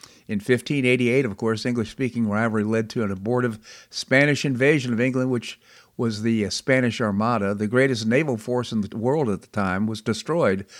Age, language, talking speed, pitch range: 50-69, English, 170 wpm, 105-130 Hz